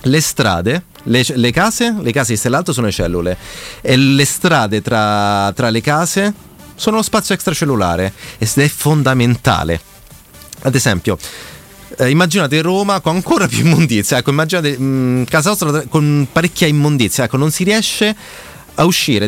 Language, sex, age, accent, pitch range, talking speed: Italian, male, 30-49, native, 105-160 Hz, 155 wpm